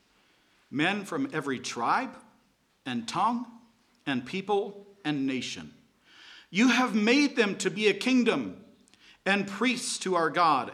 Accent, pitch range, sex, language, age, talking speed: American, 130-200 Hz, male, English, 50-69, 130 wpm